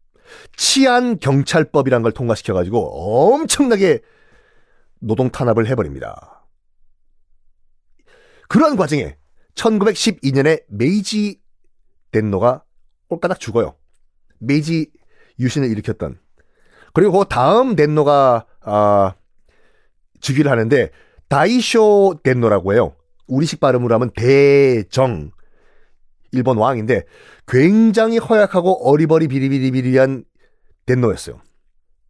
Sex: male